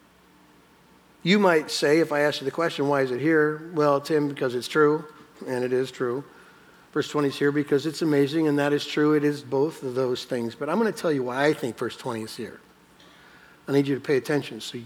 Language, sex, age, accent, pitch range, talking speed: English, male, 60-79, American, 130-155 Hz, 240 wpm